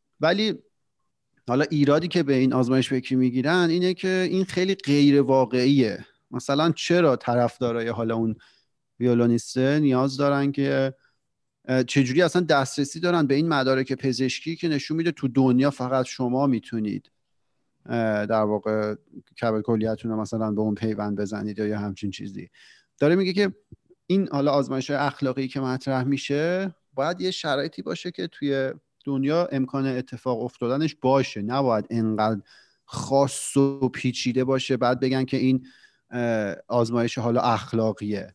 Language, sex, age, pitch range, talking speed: Persian, male, 40-59, 120-140 Hz, 135 wpm